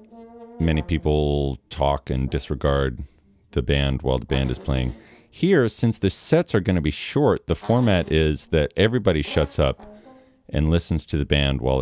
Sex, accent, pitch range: male, American, 75-110 Hz